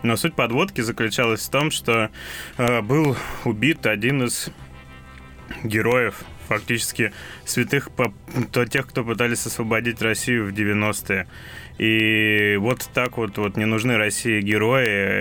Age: 20-39